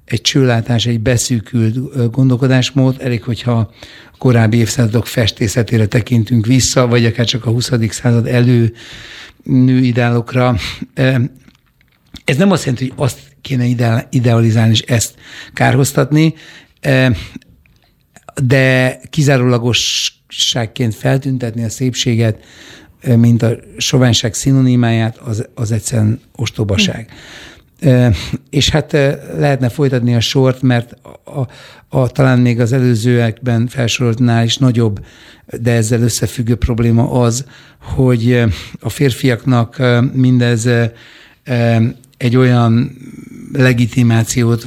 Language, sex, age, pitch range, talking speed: Hungarian, male, 60-79, 115-130 Hz, 100 wpm